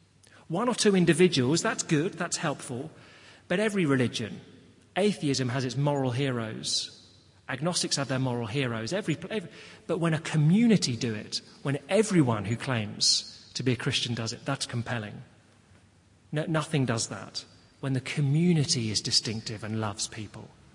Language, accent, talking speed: English, British, 155 wpm